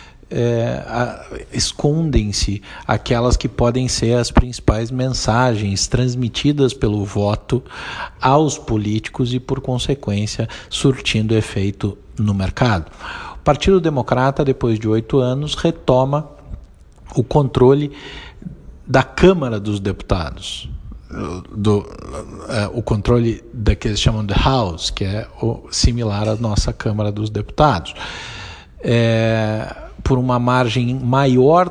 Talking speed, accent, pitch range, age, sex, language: 100 wpm, Brazilian, 105-140 Hz, 50-69, male, Portuguese